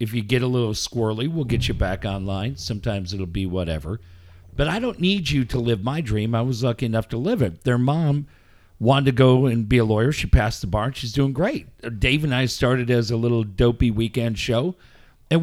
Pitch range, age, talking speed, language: 115-170 Hz, 50-69, 230 wpm, English